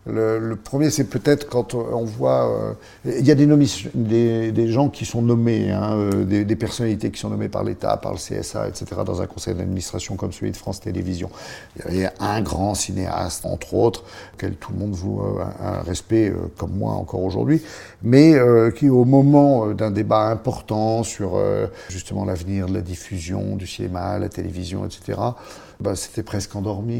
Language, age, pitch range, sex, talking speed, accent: French, 50-69, 95-115 Hz, male, 200 wpm, French